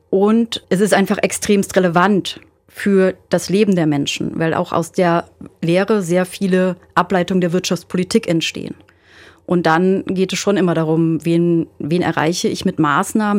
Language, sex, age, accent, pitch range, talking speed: German, female, 30-49, German, 170-205 Hz, 155 wpm